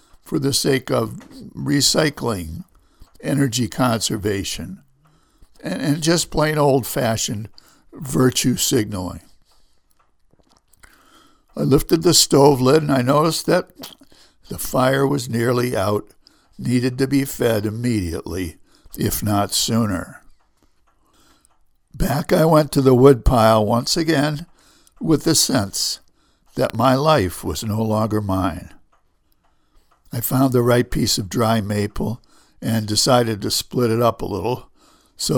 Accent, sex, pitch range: American, male, 105-135 Hz